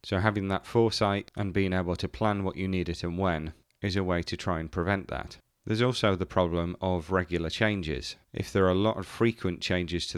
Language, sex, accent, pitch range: English, male, British, 85-100 Hz